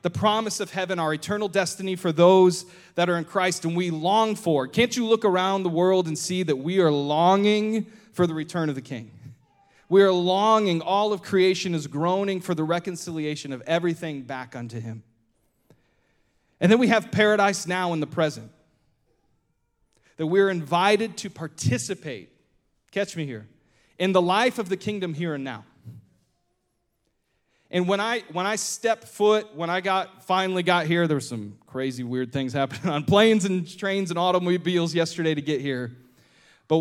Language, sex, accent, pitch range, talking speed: English, male, American, 135-190 Hz, 180 wpm